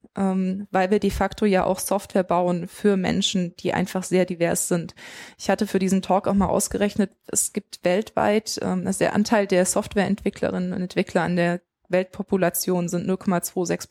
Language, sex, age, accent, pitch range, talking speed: German, female, 20-39, German, 180-205 Hz, 170 wpm